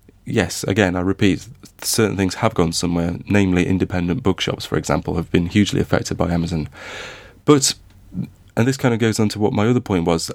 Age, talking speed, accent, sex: 30-49, 190 wpm, British, male